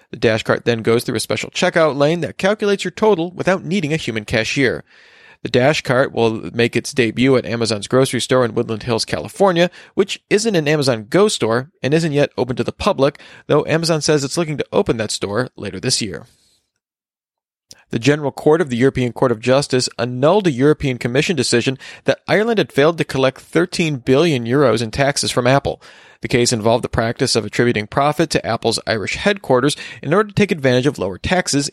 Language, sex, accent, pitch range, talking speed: English, male, American, 120-155 Hz, 200 wpm